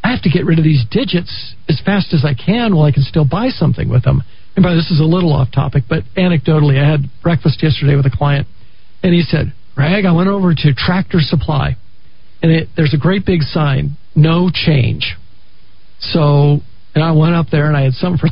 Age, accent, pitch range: 50-69, American, 140-180 Hz